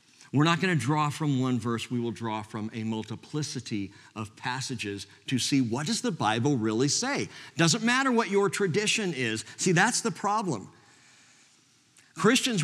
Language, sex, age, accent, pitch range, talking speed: English, male, 50-69, American, 125-190 Hz, 160 wpm